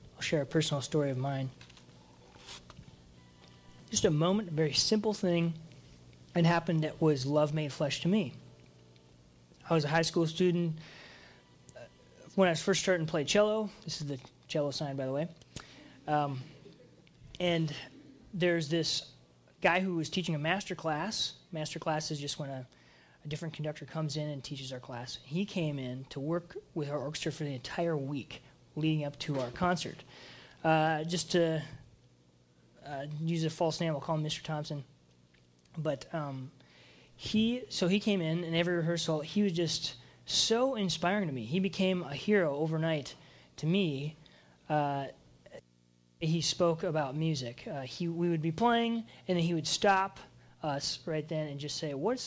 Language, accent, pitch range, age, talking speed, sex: English, American, 135-170 Hz, 20-39, 170 wpm, male